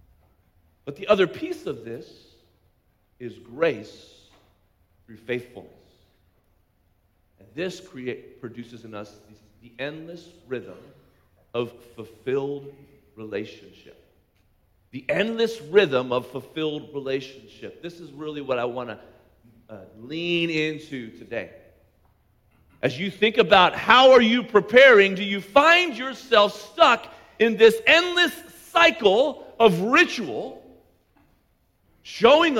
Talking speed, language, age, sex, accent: 105 wpm, English, 40-59, male, American